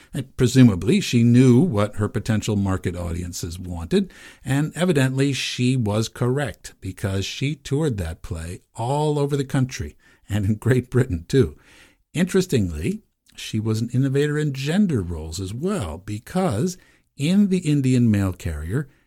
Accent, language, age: American, English, 60-79